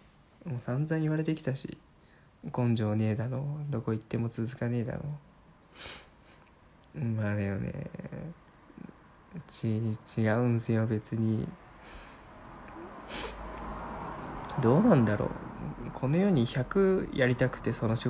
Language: Japanese